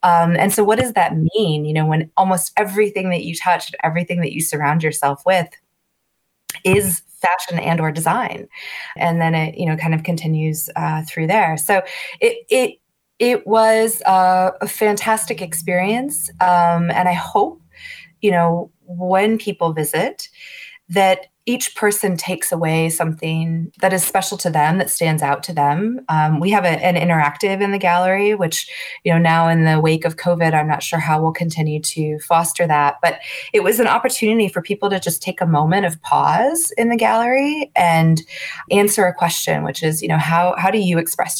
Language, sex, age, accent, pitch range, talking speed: English, female, 20-39, American, 160-210 Hz, 185 wpm